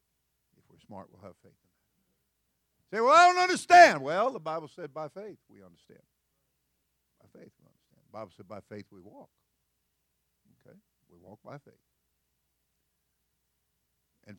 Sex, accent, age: male, American, 50-69